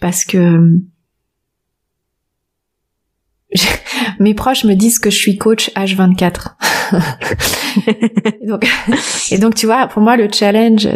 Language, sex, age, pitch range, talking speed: French, female, 20-39, 185-225 Hz, 120 wpm